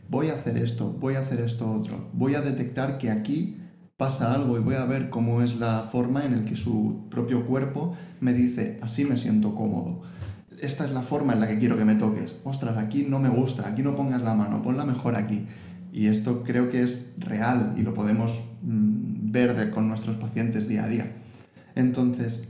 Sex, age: male, 20-39